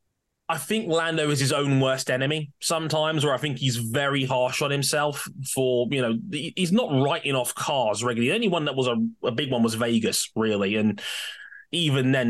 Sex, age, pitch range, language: male, 20-39, 120-170 Hz, English